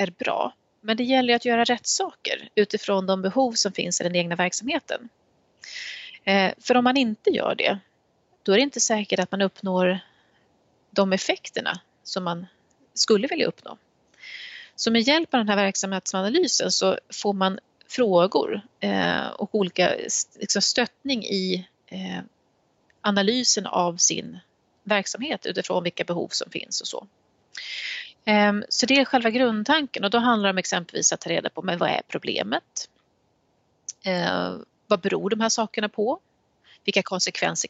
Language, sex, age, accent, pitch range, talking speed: Swedish, female, 30-49, native, 190-250 Hz, 145 wpm